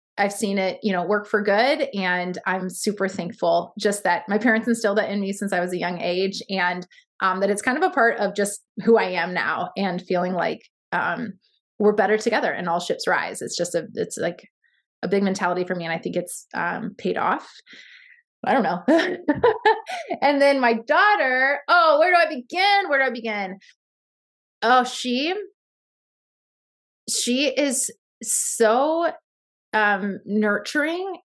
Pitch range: 195-265 Hz